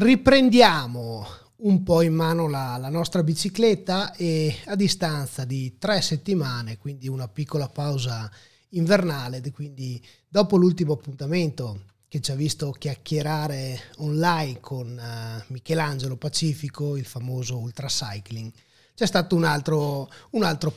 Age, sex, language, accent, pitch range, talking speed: 30-49, male, Italian, native, 125-175 Hz, 120 wpm